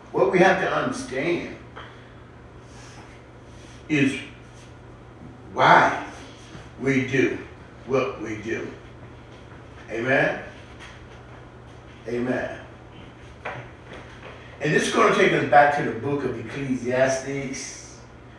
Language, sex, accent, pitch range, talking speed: English, male, American, 130-180 Hz, 90 wpm